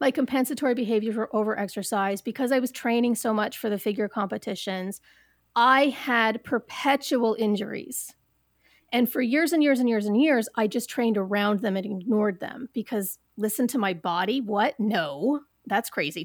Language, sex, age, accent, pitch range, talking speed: English, female, 30-49, American, 210-265 Hz, 165 wpm